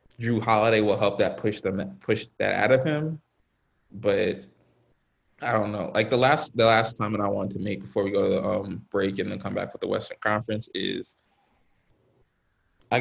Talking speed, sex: 200 wpm, male